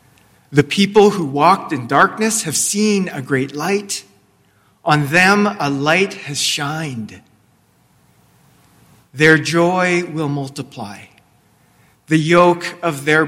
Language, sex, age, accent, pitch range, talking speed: English, male, 40-59, American, 135-175 Hz, 115 wpm